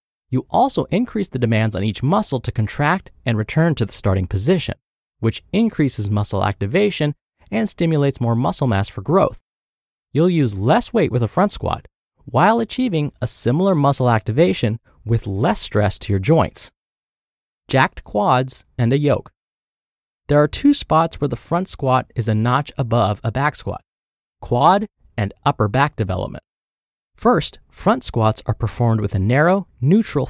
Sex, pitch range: male, 110-165 Hz